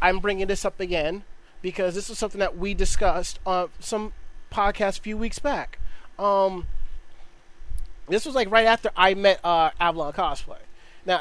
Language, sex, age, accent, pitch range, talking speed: English, male, 30-49, American, 180-230 Hz, 170 wpm